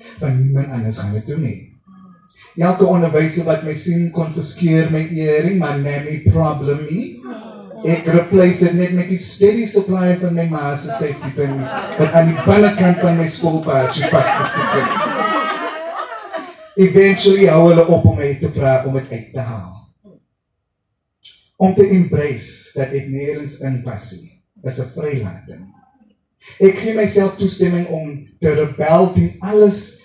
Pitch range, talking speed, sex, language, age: 135-180 Hz, 125 wpm, male, English, 30-49